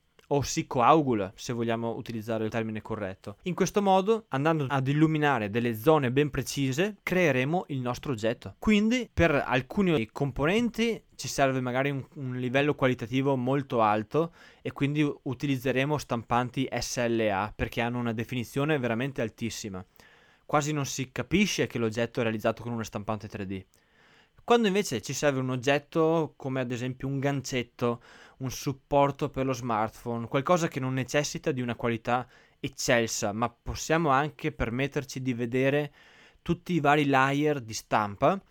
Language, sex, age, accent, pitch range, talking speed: Italian, male, 20-39, native, 115-145 Hz, 150 wpm